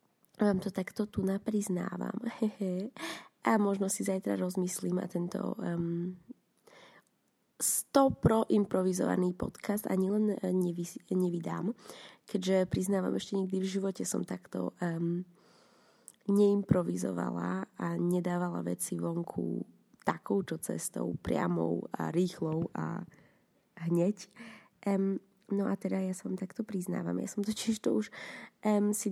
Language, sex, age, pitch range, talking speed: Slovak, female, 20-39, 180-210 Hz, 120 wpm